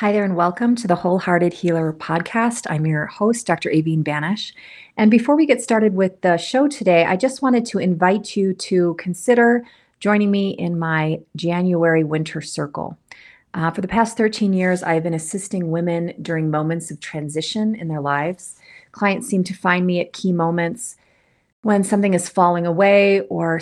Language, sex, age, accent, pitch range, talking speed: English, female, 30-49, American, 165-200 Hz, 180 wpm